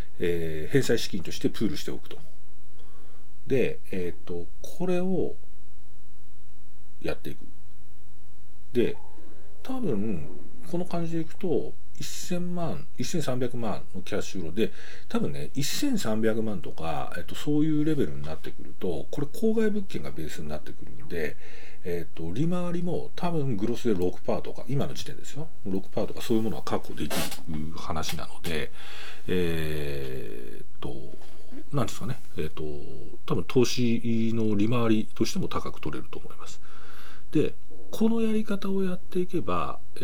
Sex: male